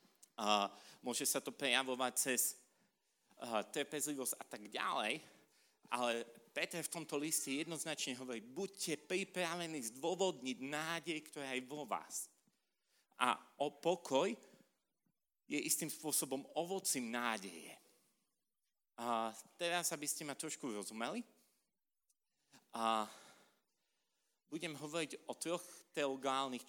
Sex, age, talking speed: male, 40-59, 105 wpm